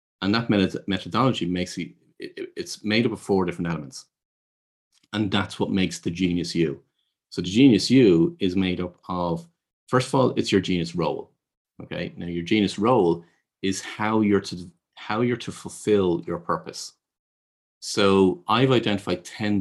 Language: English